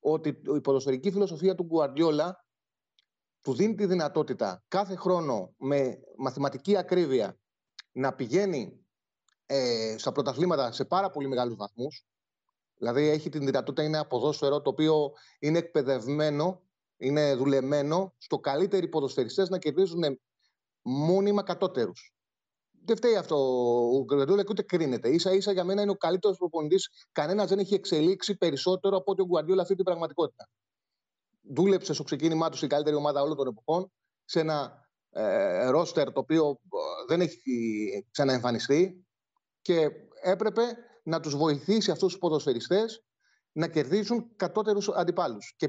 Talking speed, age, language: 135 wpm, 30-49, Greek